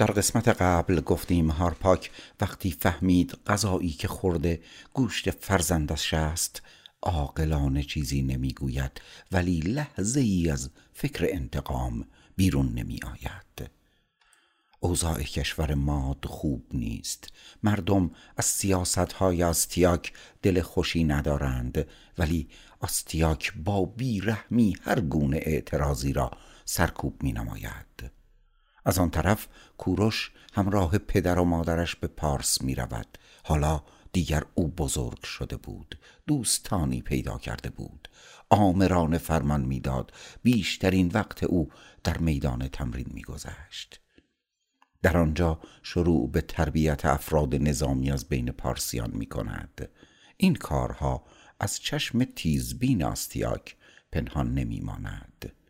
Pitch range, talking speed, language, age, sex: 75-95 Hz, 105 wpm, Persian, 60-79, male